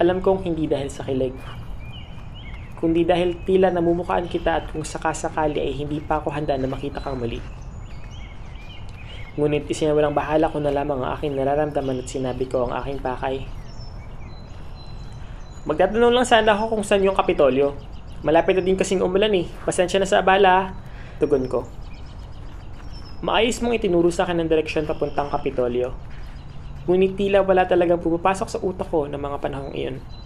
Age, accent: 20-39, native